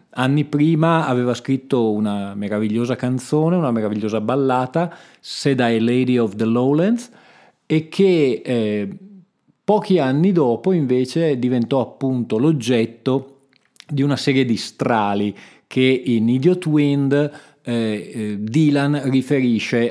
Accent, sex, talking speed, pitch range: native, male, 110 wpm, 110-145 Hz